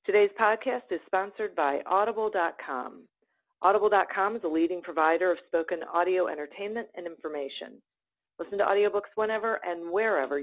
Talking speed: 130 wpm